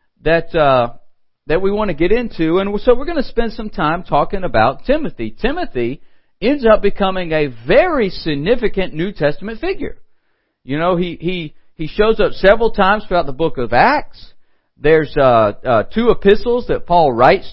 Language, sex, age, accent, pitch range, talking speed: English, male, 50-69, American, 155-220 Hz, 175 wpm